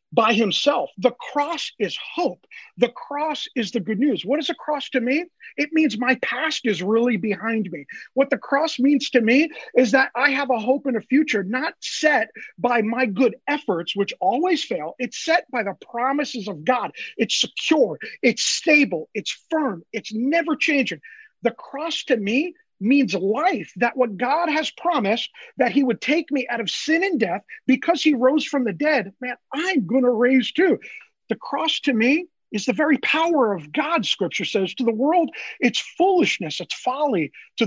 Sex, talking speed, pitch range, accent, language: male, 190 wpm, 215-285 Hz, American, English